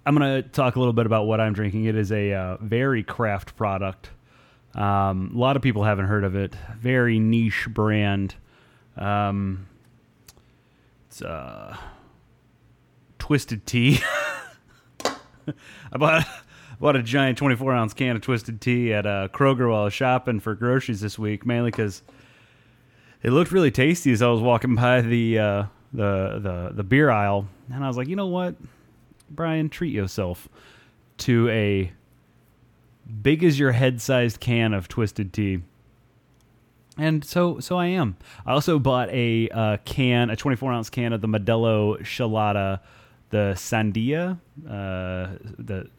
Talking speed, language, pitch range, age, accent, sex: 150 wpm, English, 105-130 Hz, 30-49, American, male